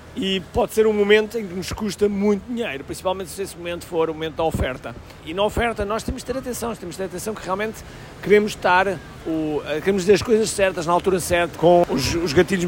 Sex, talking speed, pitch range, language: male, 225 wpm, 155-200 Hz, Portuguese